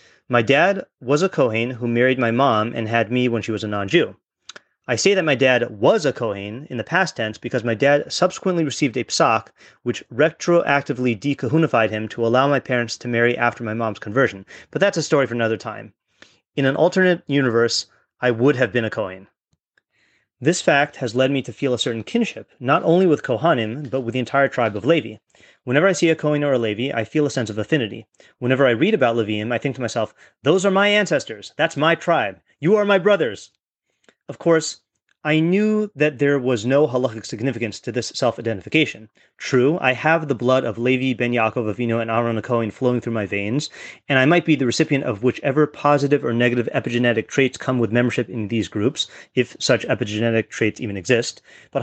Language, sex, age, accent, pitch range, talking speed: English, male, 30-49, American, 115-150 Hz, 205 wpm